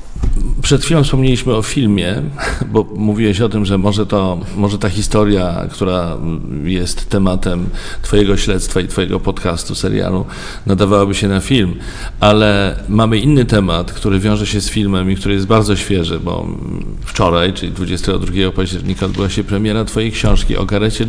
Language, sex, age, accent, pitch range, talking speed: Polish, male, 40-59, native, 95-115 Hz, 150 wpm